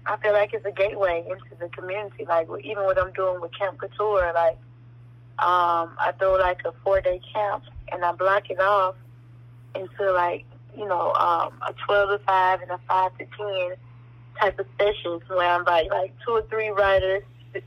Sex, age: female, 10-29